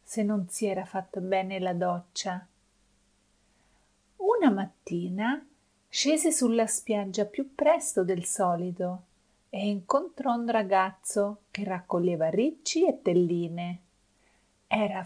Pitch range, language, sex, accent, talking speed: 180-235 Hz, Italian, female, native, 110 wpm